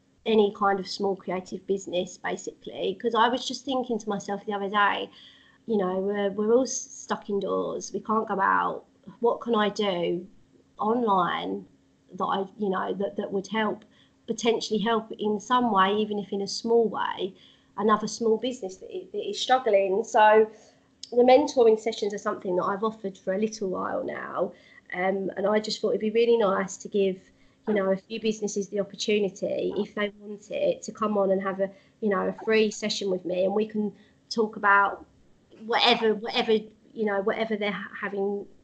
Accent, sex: British, female